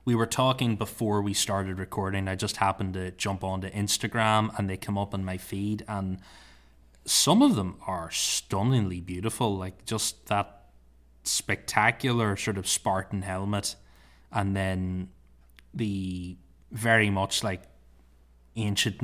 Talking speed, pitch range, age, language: 135 wpm, 95-115 Hz, 20-39, English